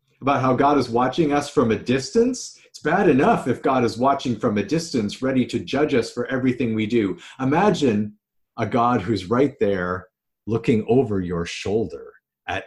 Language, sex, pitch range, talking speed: English, male, 115-165 Hz, 180 wpm